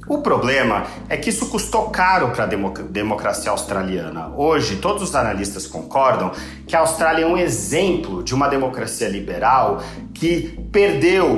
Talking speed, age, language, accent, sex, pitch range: 150 wpm, 40-59, Portuguese, Brazilian, male, 115-155 Hz